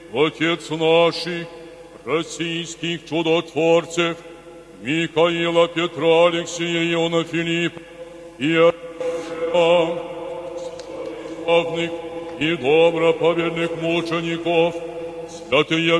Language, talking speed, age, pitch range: Polish, 55 wpm, 60-79, 165-170 Hz